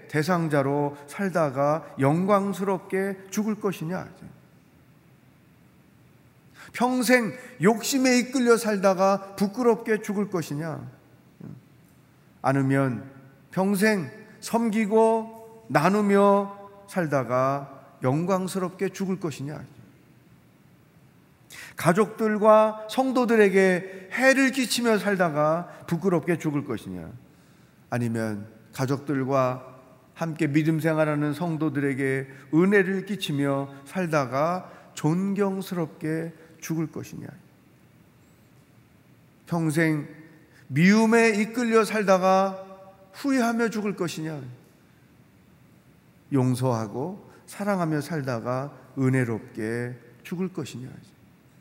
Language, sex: Korean, male